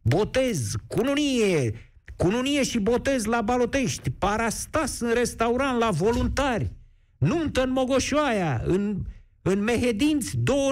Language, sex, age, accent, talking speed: Romanian, male, 50-69, native, 105 wpm